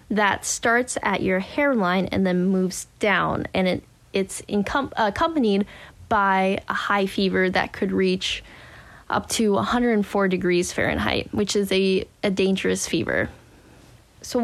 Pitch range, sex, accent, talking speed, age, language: 185-220 Hz, female, American, 135 wpm, 10-29, English